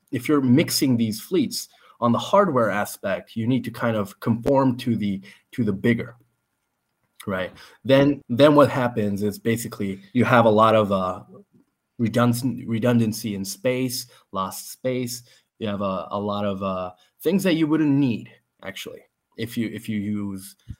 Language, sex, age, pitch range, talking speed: English, male, 20-39, 95-120 Hz, 165 wpm